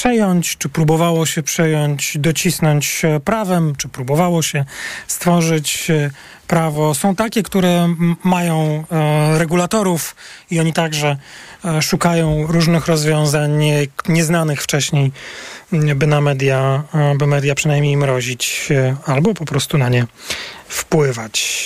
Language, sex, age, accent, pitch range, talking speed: Polish, male, 40-59, native, 150-180 Hz, 110 wpm